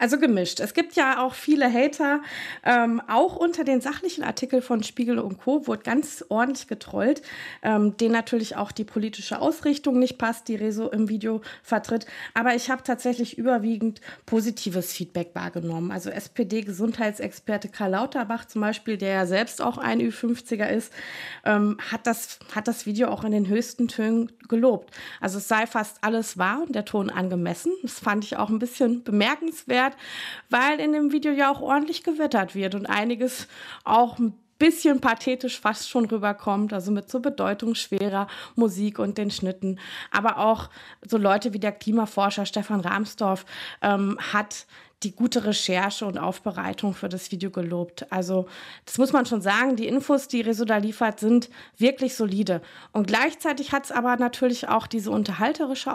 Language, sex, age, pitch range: German, female, 20-39, 205-250 Hz